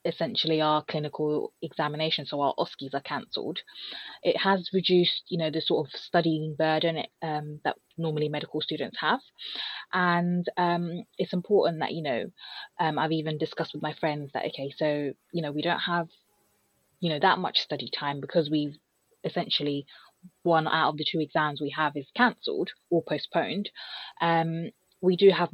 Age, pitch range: 20-39, 150-175 Hz